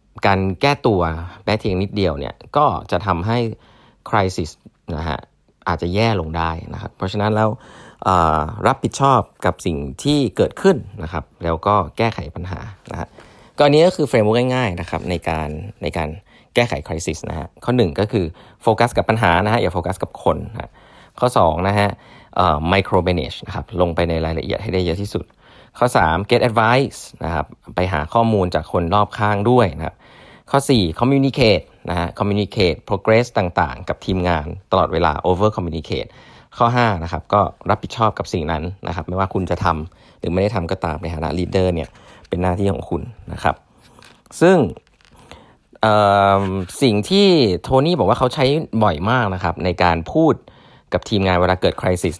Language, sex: Thai, male